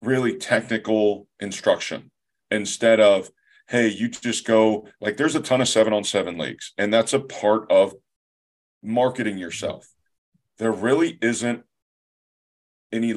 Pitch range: 105-125 Hz